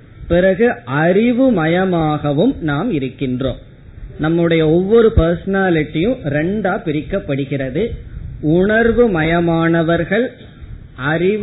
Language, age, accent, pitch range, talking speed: Tamil, 20-39, native, 140-195 Hz, 65 wpm